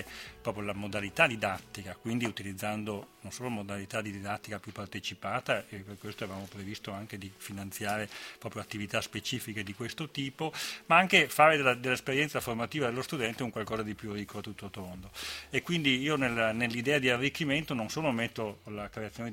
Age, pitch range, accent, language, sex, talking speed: 40-59, 105-120 Hz, native, Italian, male, 175 wpm